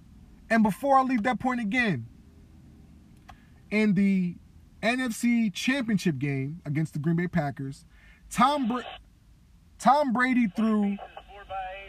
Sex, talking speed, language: male, 110 wpm, English